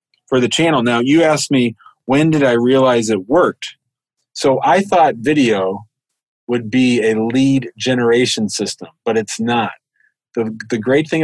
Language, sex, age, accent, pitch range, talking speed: English, male, 40-59, American, 110-135 Hz, 160 wpm